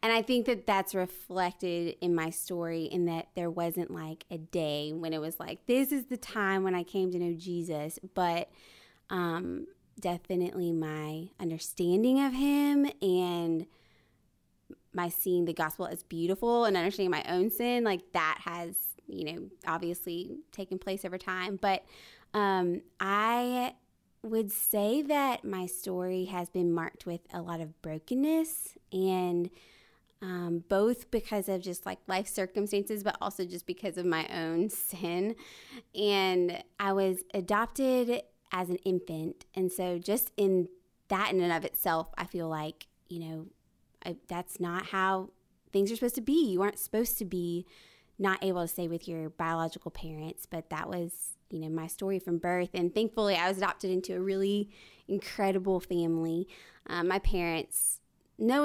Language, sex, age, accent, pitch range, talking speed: English, female, 20-39, American, 170-205 Hz, 160 wpm